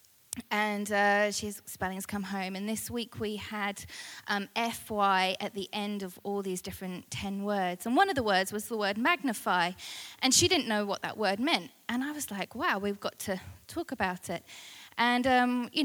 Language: English